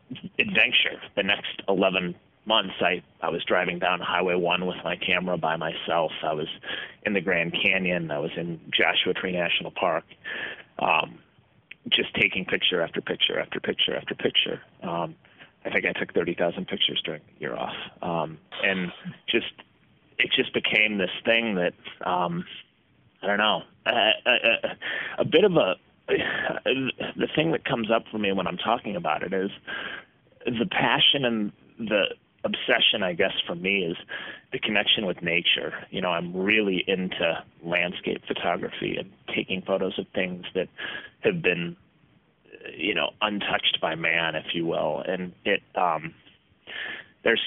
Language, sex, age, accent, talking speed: English, male, 30-49, American, 160 wpm